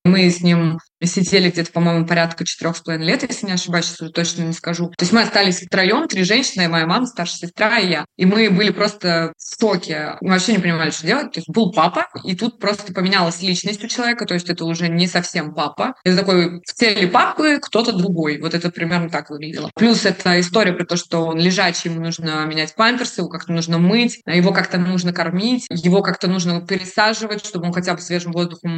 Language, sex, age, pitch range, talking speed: Russian, female, 20-39, 170-210 Hz, 215 wpm